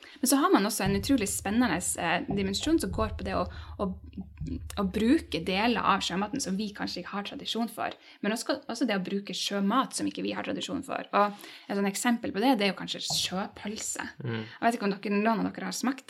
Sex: female